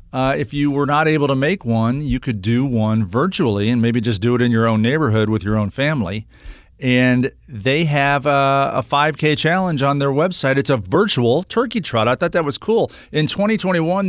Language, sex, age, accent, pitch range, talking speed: English, male, 40-59, American, 110-145 Hz, 210 wpm